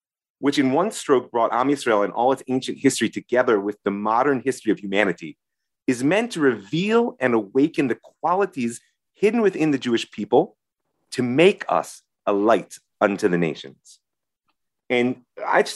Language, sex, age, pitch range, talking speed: English, male, 30-49, 105-150 Hz, 165 wpm